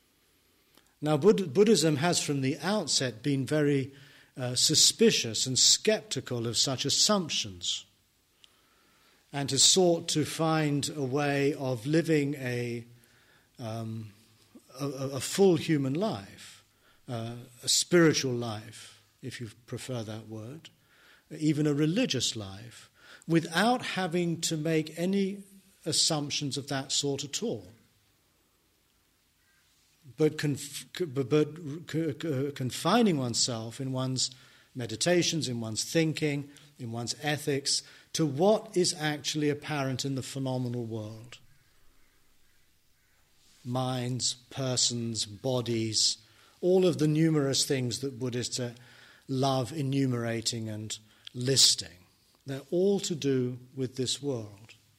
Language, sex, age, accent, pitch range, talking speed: English, male, 50-69, British, 120-150 Hz, 110 wpm